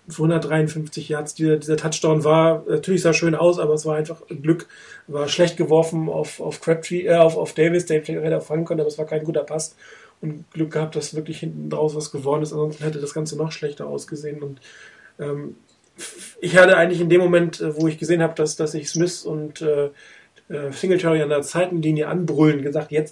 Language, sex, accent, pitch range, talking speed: German, male, German, 150-170 Hz, 200 wpm